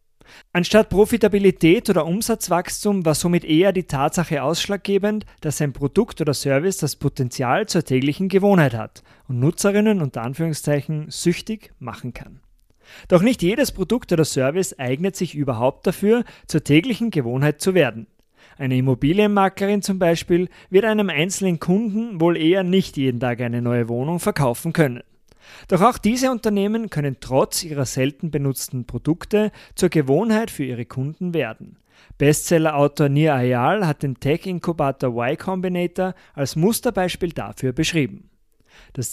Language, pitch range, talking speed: German, 135-190 Hz, 140 wpm